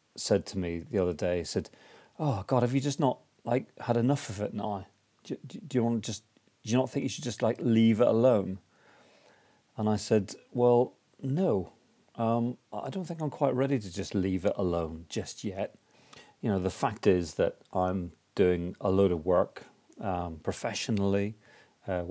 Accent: British